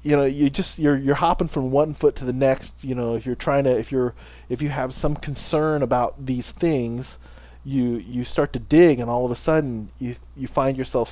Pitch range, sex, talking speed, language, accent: 85-135 Hz, male, 230 wpm, English, American